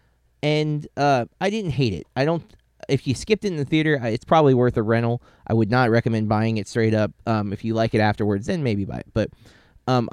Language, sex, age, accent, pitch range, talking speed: English, male, 20-39, American, 105-125 Hz, 235 wpm